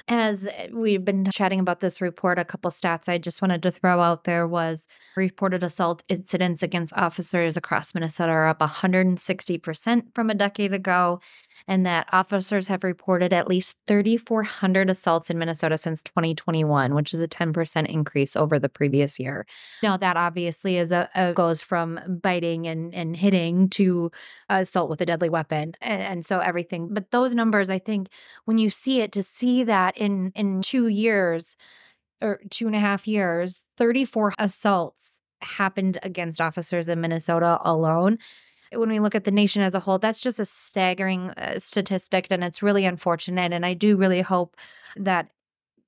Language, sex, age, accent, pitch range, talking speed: English, female, 20-39, American, 175-200 Hz, 165 wpm